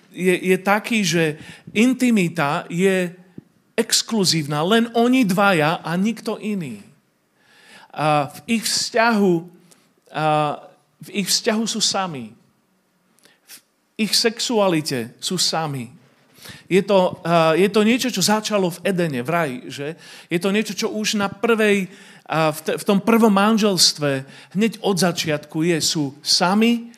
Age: 40-59